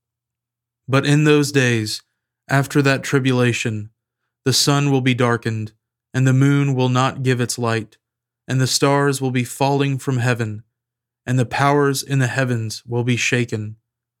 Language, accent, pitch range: English, American, 120-135 Hz